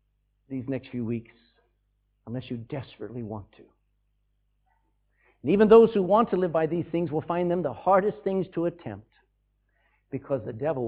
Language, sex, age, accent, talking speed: English, male, 60-79, American, 165 wpm